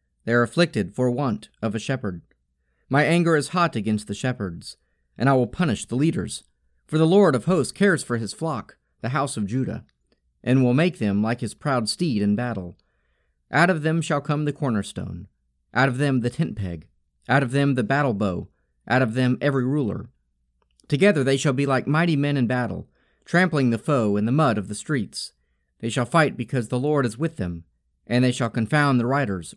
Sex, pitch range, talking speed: male, 100-145 Hz, 205 wpm